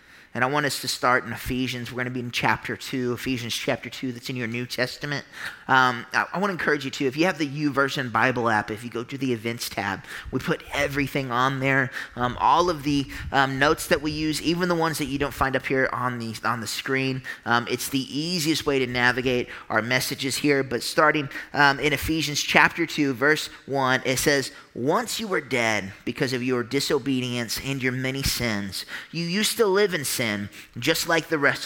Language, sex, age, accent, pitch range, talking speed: English, male, 20-39, American, 125-160 Hz, 220 wpm